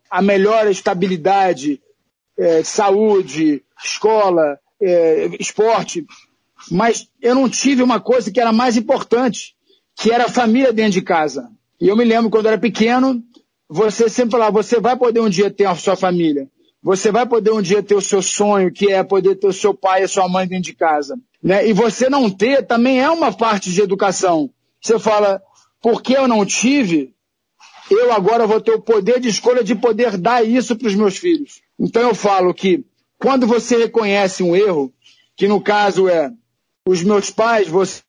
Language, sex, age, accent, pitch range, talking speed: Portuguese, male, 50-69, Brazilian, 195-245 Hz, 185 wpm